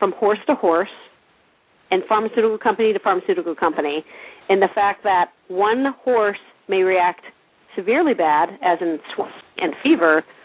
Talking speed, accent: 145 wpm, American